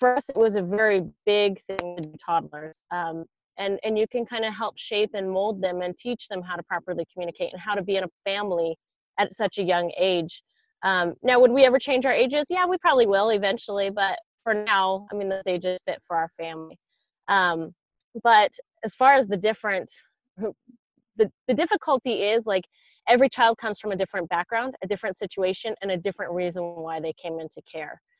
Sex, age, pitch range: female, 20-39, 180-230 Hz